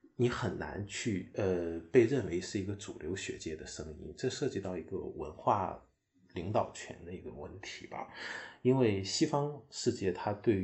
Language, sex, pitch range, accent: Chinese, male, 90-115 Hz, native